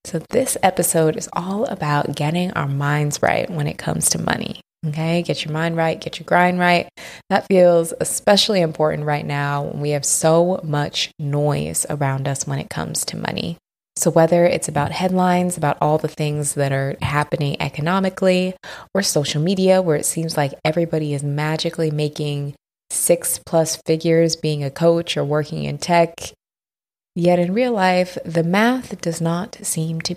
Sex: female